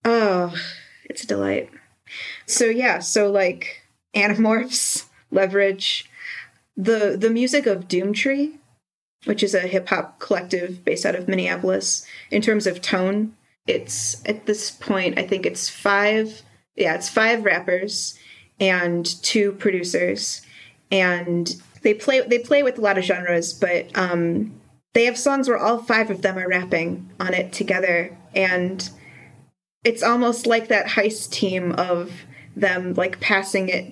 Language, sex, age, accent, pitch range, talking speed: English, female, 30-49, American, 180-220 Hz, 145 wpm